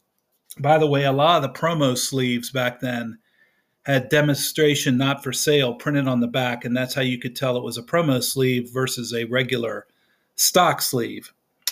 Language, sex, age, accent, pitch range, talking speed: English, male, 40-59, American, 130-160 Hz, 185 wpm